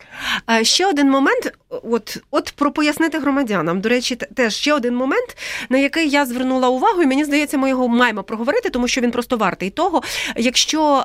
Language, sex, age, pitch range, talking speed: Ukrainian, female, 30-49, 200-260 Hz, 180 wpm